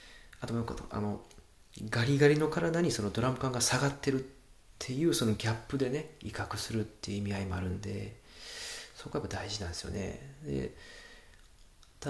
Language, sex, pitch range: Japanese, male, 100-130 Hz